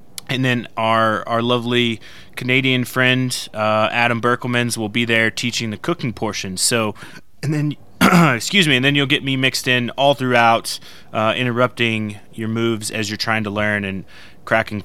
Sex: male